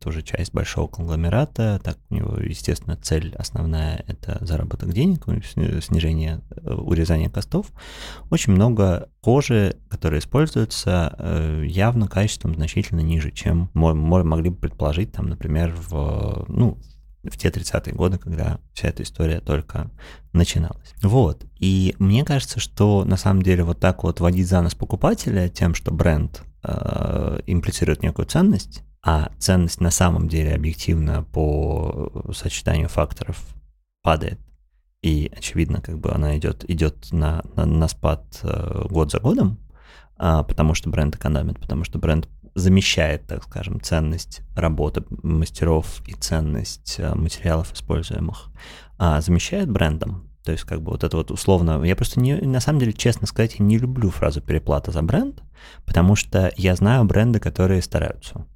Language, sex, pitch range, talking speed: Russian, male, 80-100 Hz, 145 wpm